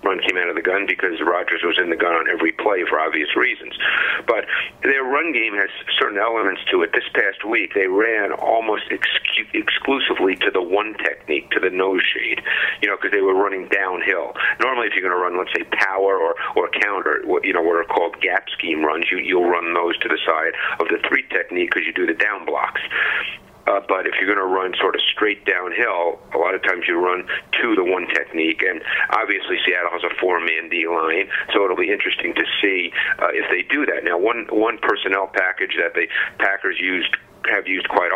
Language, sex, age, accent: English, male, 50-69, American